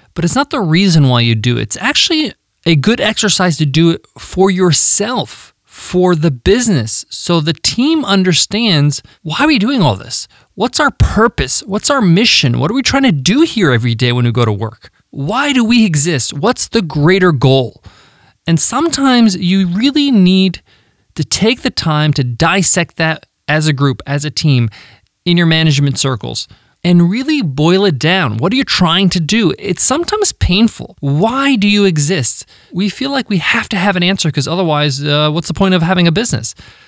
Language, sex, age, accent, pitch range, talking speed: English, male, 20-39, American, 140-200 Hz, 195 wpm